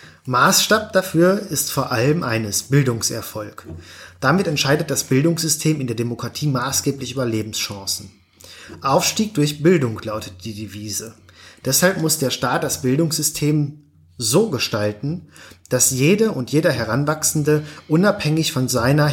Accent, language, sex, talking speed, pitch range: German, German, male, 120 wpm, 115-150 Hz